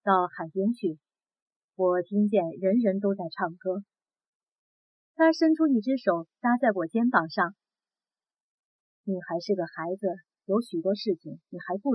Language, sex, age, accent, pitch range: Chinese, female, 30-49, native, 185-235 Hz